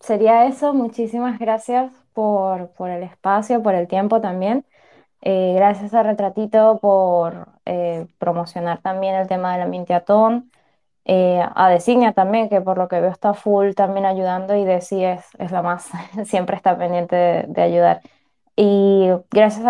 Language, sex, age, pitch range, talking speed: Spanish, female, 10-29, 175-205 Hz, 160 wpm